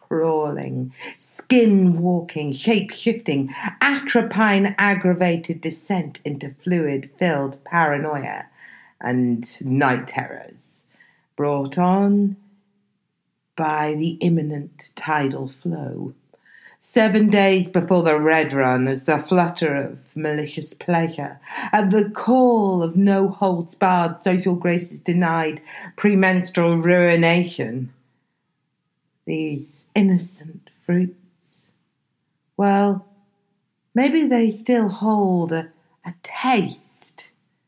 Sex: female